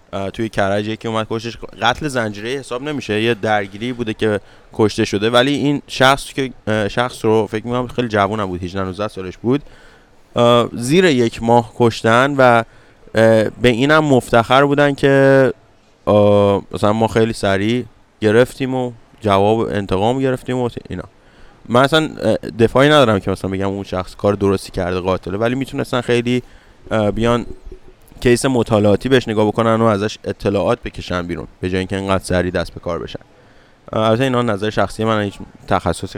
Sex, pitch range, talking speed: male, 100-125 Hz, 155 wpm